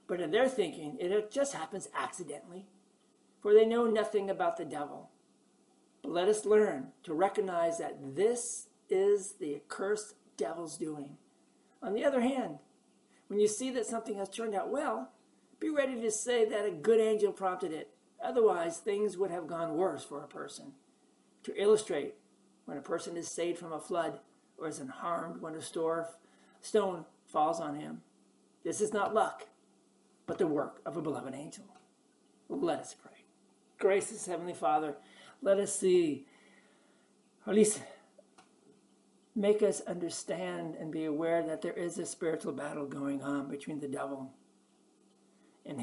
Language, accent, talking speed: English, American, 155 wpm